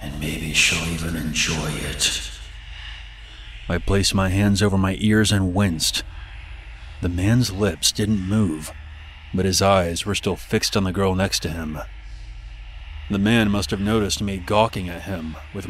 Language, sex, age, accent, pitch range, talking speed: English, male, 30-49, American, 80-100 Hz, 160 wpm